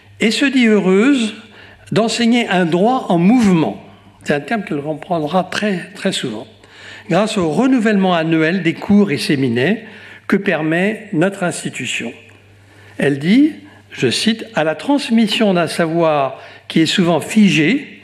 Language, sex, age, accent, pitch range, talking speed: French, male, 60-79, French, 140-205 Hz, 145 wpm